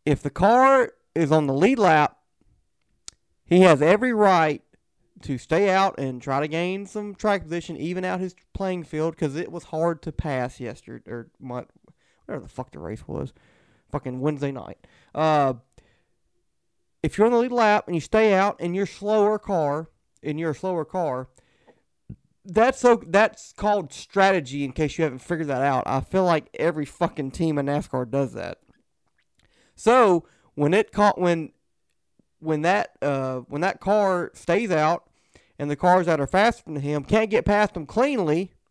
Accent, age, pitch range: American, 30-49, 145-195 Hz